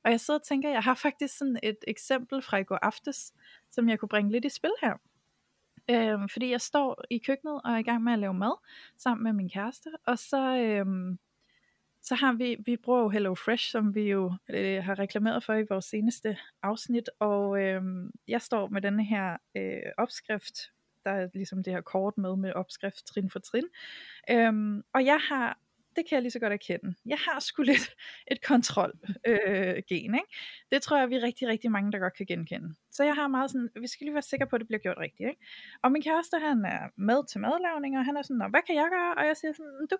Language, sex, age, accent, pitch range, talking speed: Danish, female, 20-39, native, 205-280 Hz, 220 wpm